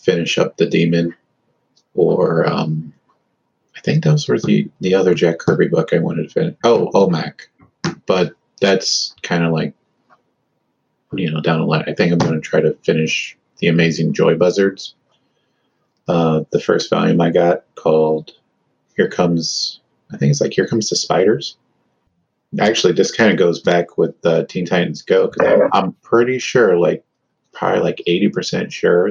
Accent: American